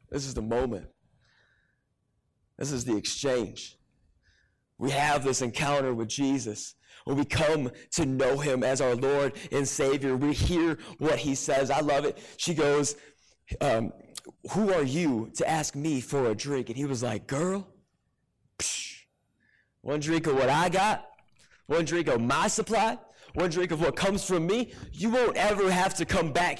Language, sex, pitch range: English, male, 145-240 Hz